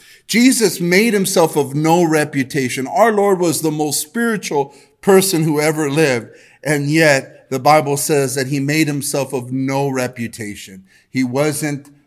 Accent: American